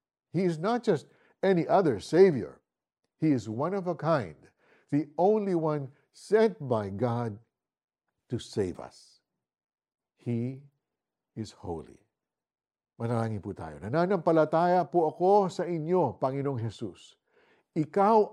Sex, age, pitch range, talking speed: male, 60-79, 115-175 Hz, 120 wpm